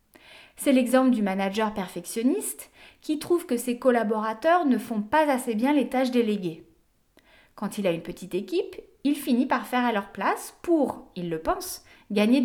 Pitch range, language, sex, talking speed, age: 215-300 Hz, French, female, 175 wpm, 30-49